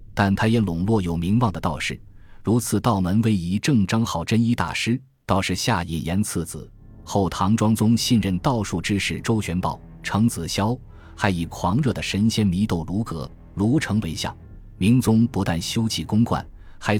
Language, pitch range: Chinese, 85-115 Hz